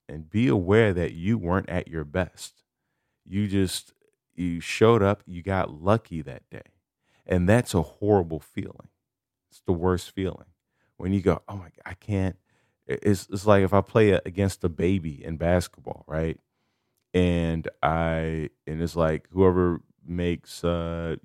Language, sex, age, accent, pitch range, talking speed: English, male, 30-49, American, 80-100 Hz, 160 wpm